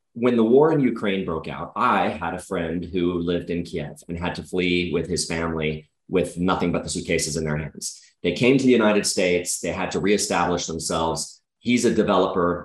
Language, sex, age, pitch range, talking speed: English, male, 30-49, 85-100 Hz, 210 wpm